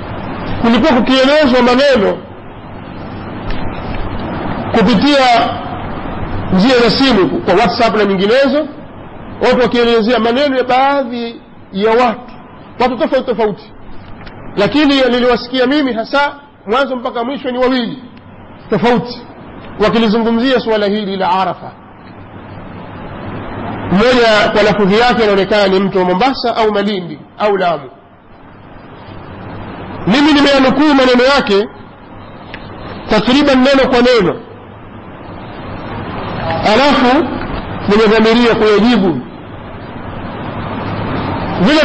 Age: 50-69